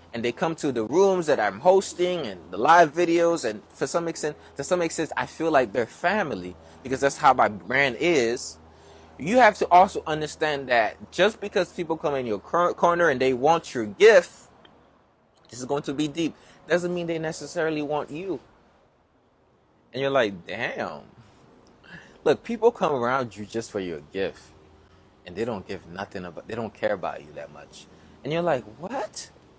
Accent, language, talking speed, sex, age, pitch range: American, English, 185 wpm, male, 20-39, 100-160 Hz